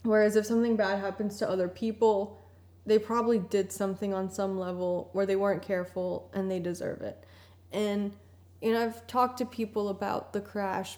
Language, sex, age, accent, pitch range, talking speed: English, female, 10-29, American, 190-220 Hz, 180 wpm